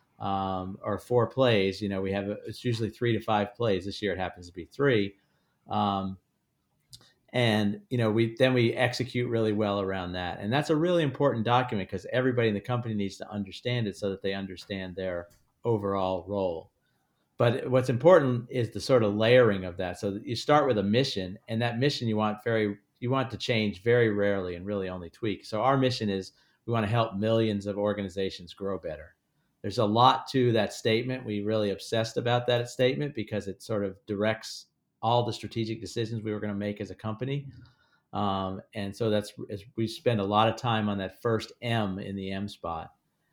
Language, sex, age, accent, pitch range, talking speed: English, male, 50-69, American, 100-120 Hz, 205 wpm